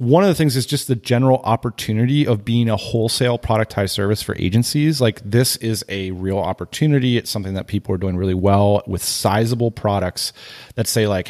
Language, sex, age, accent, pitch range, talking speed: English, male, 30-49, American, 105-130 Hz, 195 wpm